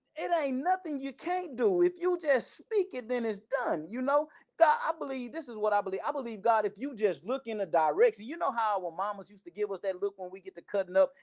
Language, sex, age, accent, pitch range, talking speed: English, male, 30-49, American, 175-240 Hz, 275 wpm